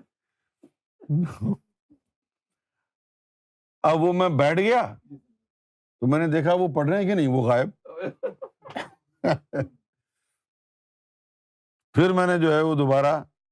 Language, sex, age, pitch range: Urdu, male, 50-69, 135-190 Hz